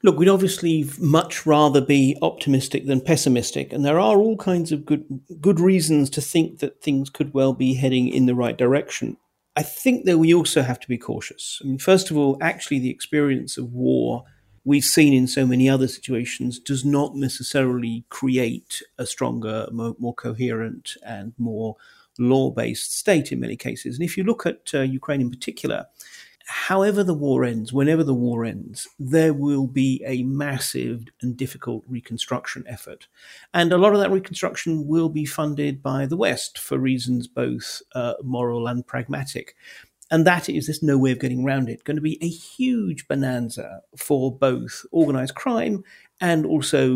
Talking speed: 180 wpm